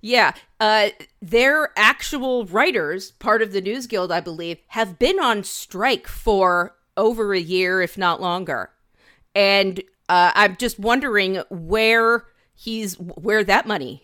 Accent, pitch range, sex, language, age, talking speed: American, 175-220 Hz, female, English, 40-59, 135 wpm